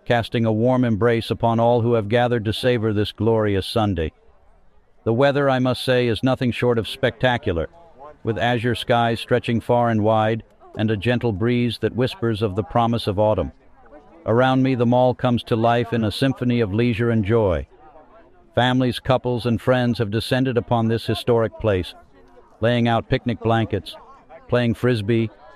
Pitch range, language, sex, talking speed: 110-125 Hz, English, male, 170 wpm